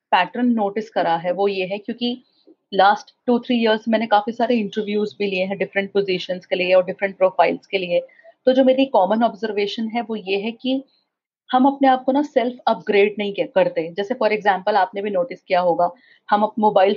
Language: Hindi